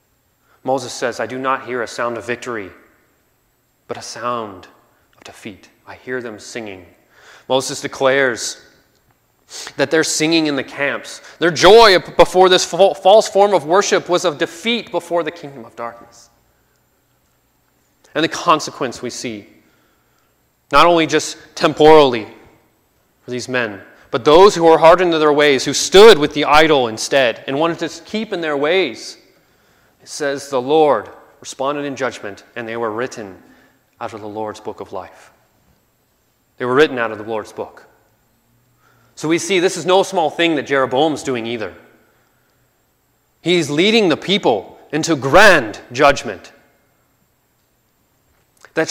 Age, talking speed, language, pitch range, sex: 30-49, 150 wpm, English, 120-165 Hz, male